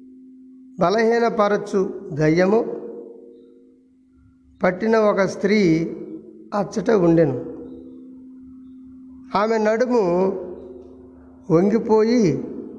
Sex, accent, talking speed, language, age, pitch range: male, native, 50 wpm, Telugu, 50-69, 155-235 Hz